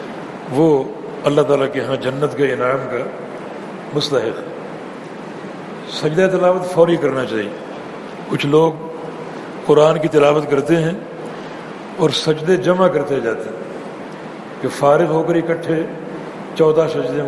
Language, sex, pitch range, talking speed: Urdu, male, 145-175 Hz, 125 wpm